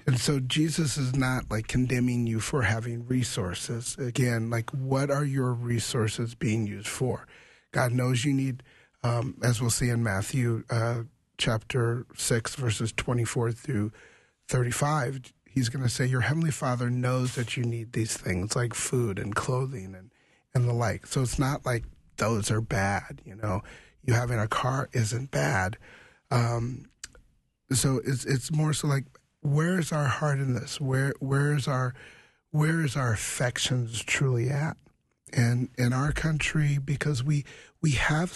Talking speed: 160 wpm